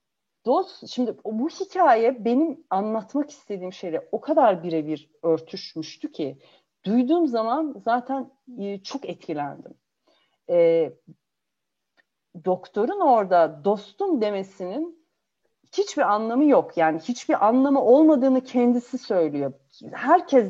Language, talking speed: Turkish, 95 wpm